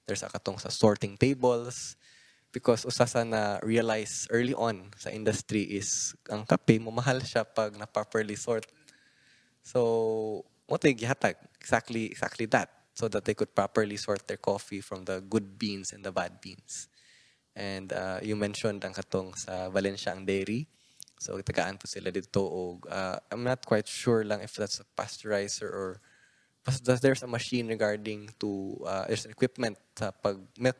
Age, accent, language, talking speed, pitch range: 20-39, native, Filipino, 135 wpm, 100-120 Hz